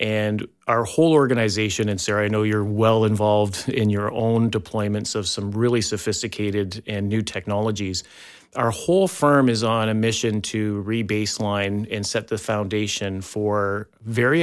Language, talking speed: English, 155 wpm